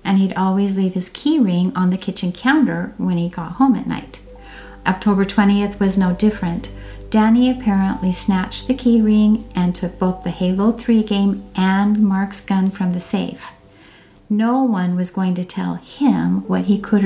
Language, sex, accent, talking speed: English, female, American, 180 wpm